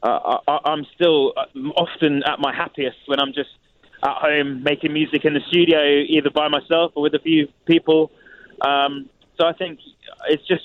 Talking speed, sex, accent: 180 wpm, male, British